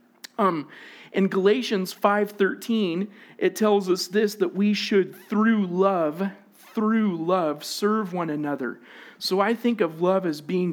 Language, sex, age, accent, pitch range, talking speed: English, male, 40-59, American, 165-205 Hz, 135 wpm